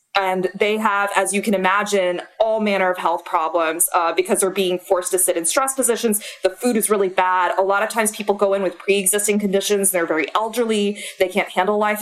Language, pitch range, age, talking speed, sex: English, 180-210 Hz, 20-39, 220 wpm, female